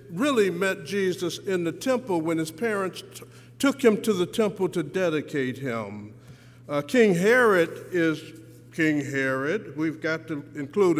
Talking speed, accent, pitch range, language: 145 wpm, American, 130-210 Hz, English